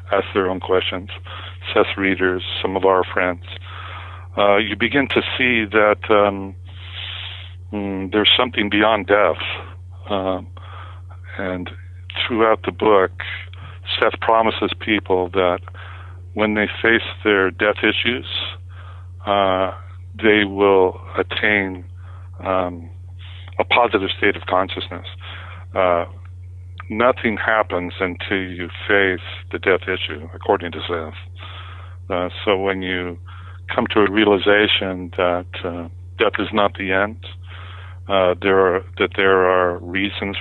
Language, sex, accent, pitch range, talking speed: English, male, American, 90-100 Hz, 115 wpm